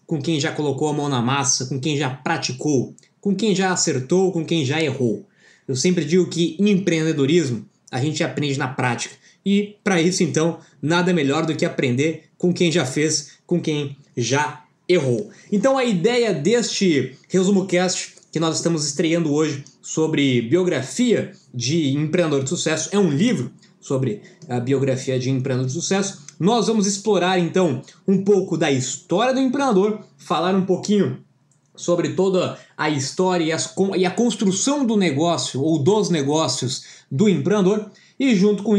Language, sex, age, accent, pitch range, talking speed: Portuguese, male, 20-39, Brazilian, 145-195 Hz, 160 wpm